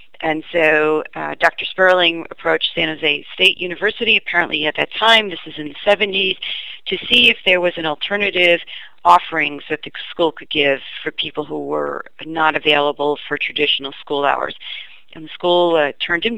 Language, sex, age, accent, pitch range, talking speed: English, female, 40-59, American, 150-180 Hz, 175 wpm